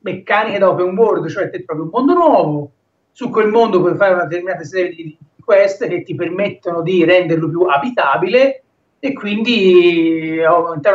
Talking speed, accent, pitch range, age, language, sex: 165 wpm, native, 165-225 Hz, 30-49, Italian, male